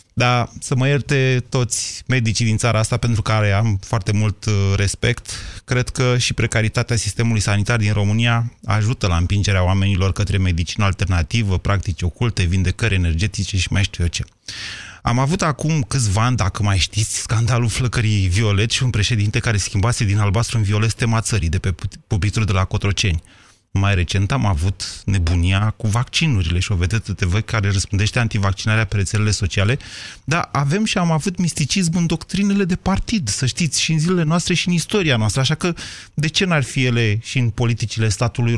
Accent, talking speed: native, 180 wpm